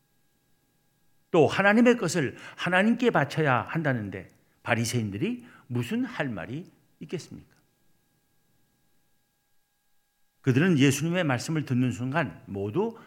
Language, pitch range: Korean, 125-170 Hz